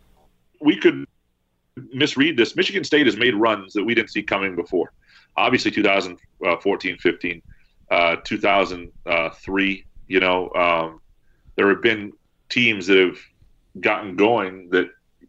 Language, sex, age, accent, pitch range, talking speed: English, male, 40-59, American, 85-100 Hz, 125 wpm